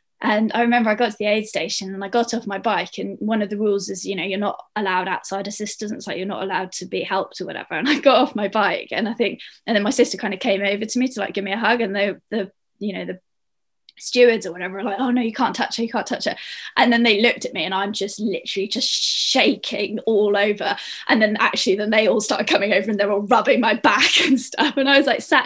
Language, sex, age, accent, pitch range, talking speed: English, female, 20-39, British, 205-255 Hz, 280 wpm